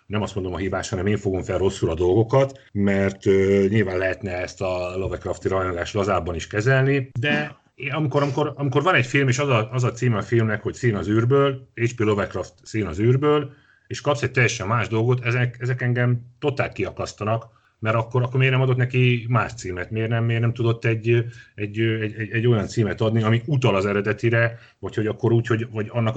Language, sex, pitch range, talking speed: Hungarian, male, 100-120 Hz, 200 wpm